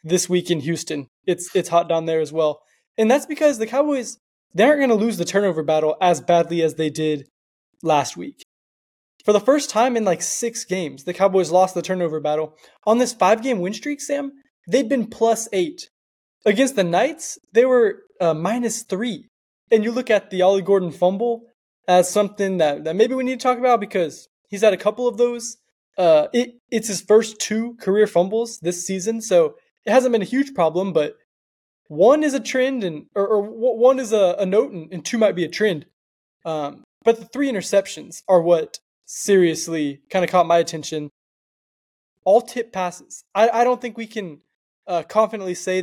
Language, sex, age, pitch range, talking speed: English, male, 20-39, 170-230 Hz, 195 wpm